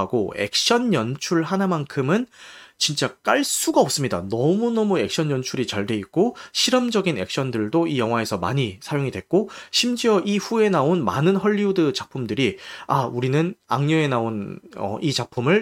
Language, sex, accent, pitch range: Korean, male, native, 115-180 Hz